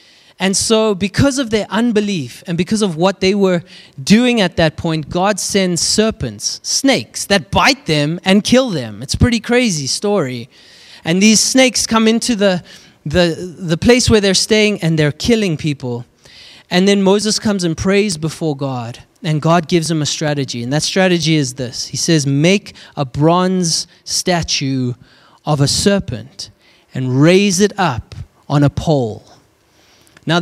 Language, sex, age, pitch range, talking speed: English, male, 20-39, 140-190 Hz, 160 wpm